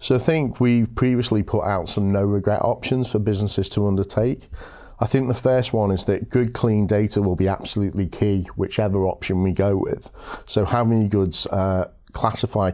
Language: English